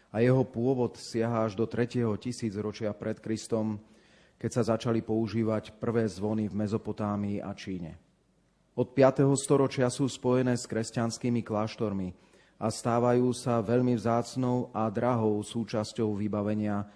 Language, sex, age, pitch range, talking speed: Slovak, male, 30-49, 110-120 Hz, 130 wpm